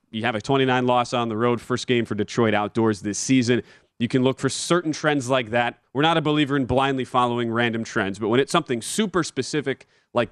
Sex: male